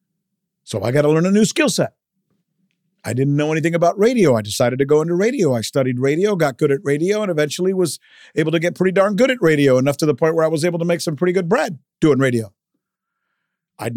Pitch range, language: 150-195 Hz, English